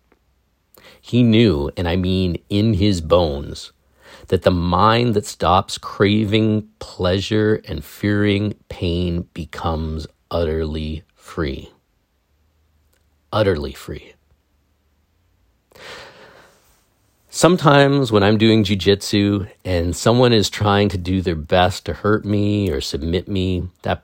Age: 40-59